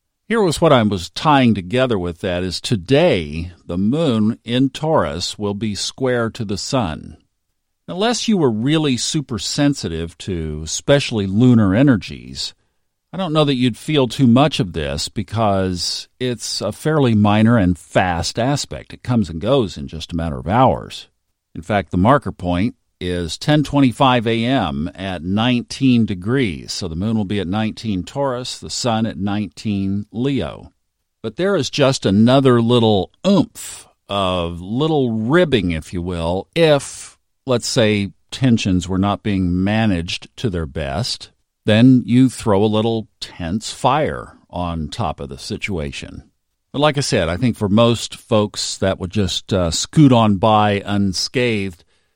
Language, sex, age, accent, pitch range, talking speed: English, male, 50-69, American, 90-125 Hz, 155 wpm